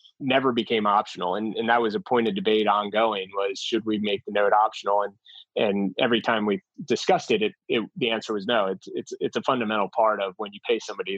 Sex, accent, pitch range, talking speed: male, American, 105-120 Hz, 230 wpm